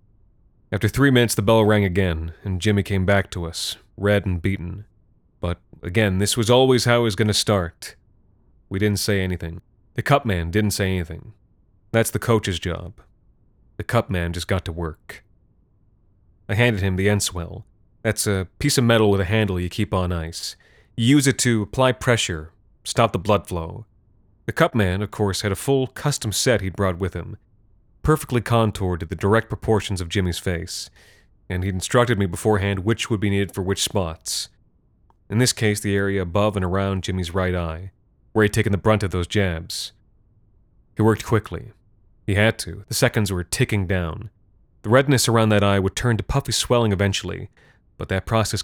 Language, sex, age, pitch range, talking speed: English, male, 30-49, 95-110 Hz, 185 wpm